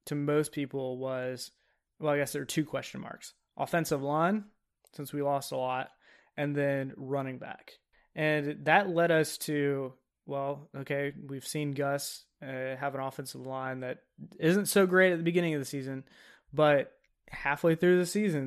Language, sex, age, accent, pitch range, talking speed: English, male, 20-39, American, 135-170 Hz, 170 wpm